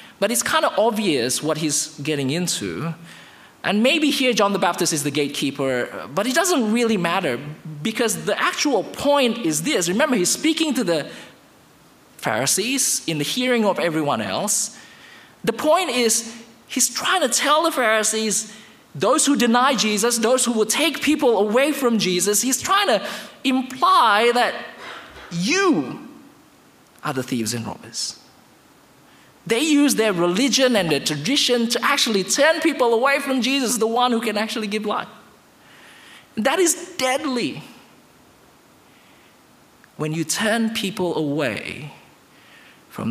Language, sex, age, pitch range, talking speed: English, male, 20-39, 160-260 Hz, 145 wpm